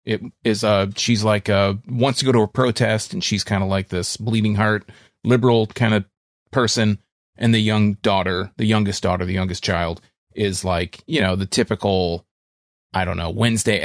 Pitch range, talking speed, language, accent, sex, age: 95-115 Hz, 200 wpm, English, American, male, 30-49